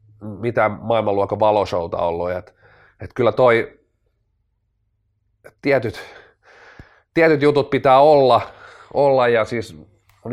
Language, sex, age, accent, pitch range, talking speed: Finnish, male, 30-49, native, 100-125 Hz, 100 wpm